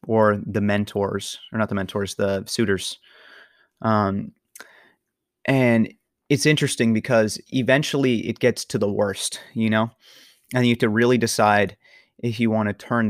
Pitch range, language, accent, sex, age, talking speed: 105-120 Hz, English, American, male, 30-49, 150 wpm